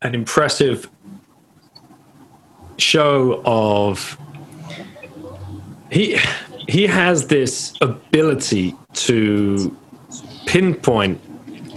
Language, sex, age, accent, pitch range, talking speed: English, male, 30-49, British, 110-145 Hz, 55 wpm